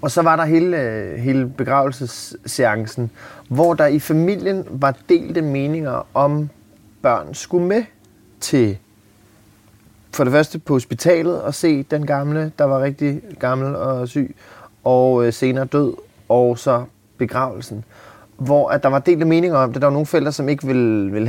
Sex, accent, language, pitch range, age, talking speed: male, Danish, English, 115-145 Hz, 30-49, 160 wpm